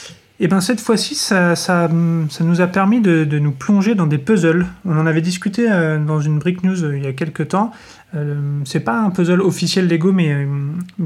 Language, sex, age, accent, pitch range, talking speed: French, male, 30-49, French, 150-180 Hz, 230 wpm